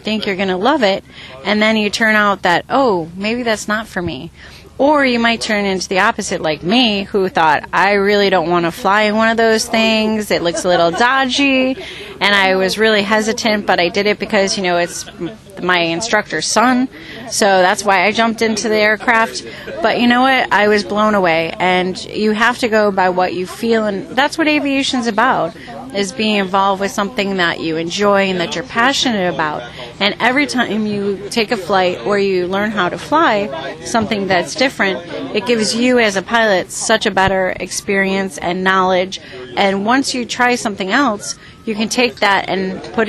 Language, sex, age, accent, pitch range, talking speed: English, female, 30-49, American, 185-225 Hz, 200 wpm